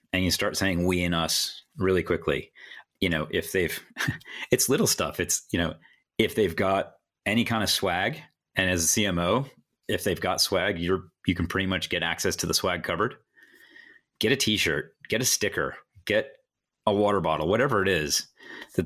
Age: 30-49